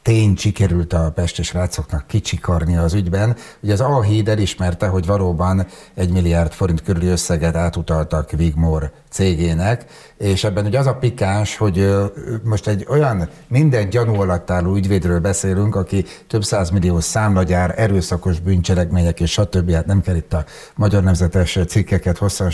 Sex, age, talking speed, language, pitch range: male, 60-79, 145 wpm, Hungarian, 90-120 Hz